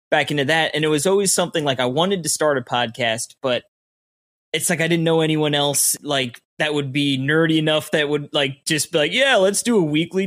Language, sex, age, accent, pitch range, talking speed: English, male, 20-39, American, 135-165 Hz, 235 wpm